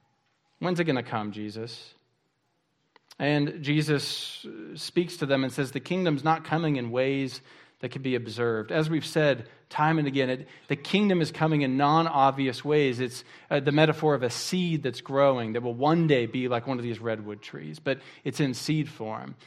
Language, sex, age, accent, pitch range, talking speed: English, male, 40-59, American, 120-155 Hz, 190 wpm